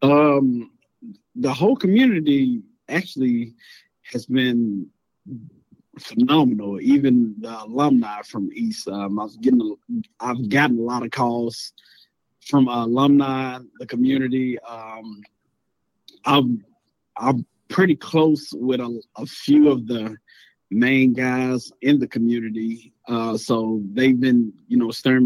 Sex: male